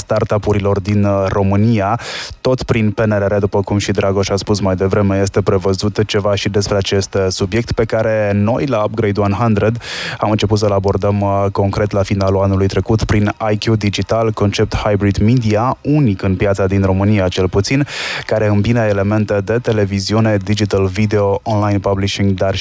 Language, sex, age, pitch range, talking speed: Romanian, male, 20-39, 100-115 Hz, 155 wpm